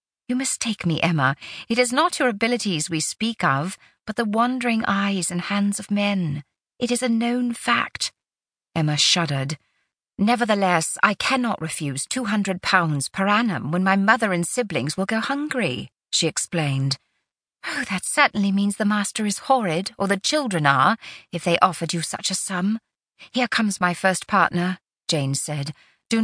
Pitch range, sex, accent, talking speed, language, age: 155-220 Hz, female, British, 165 wpm, English, 40-59